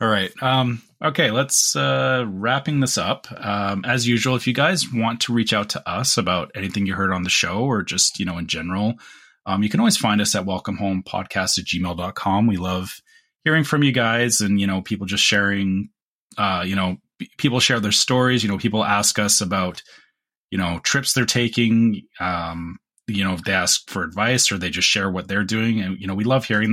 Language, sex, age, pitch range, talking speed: English, male, 30-49, 95-125 Hz, 220 wpm